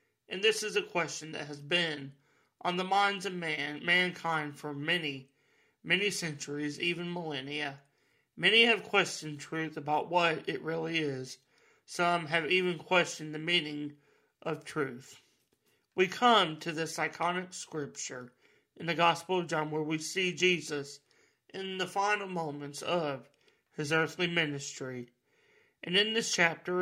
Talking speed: 145 wpm